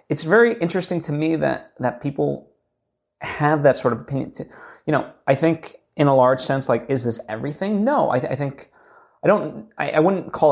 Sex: male